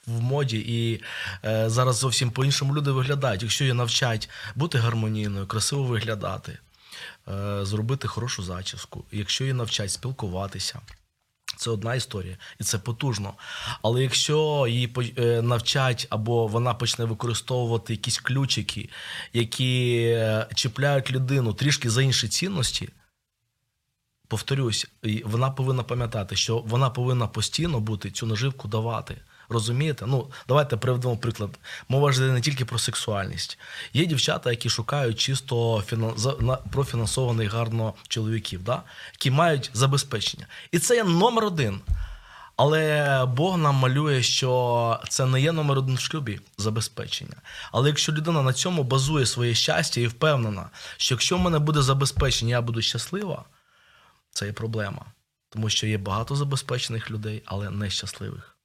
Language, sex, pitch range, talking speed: Ukrainian, male, 110-135 Hz, 135 wpm